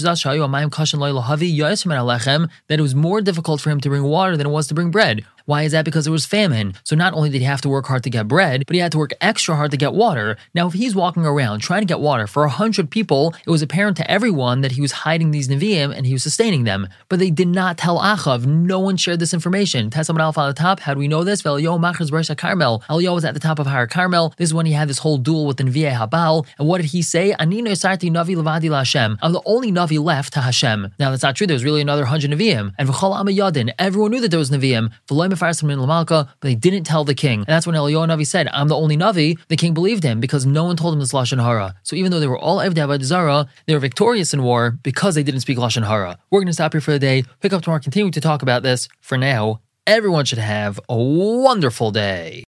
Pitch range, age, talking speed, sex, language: 135-175 Hz, 20-39, 250 wpm, male, English